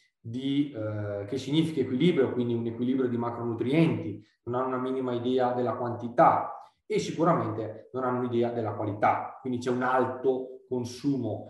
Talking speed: 145 wpm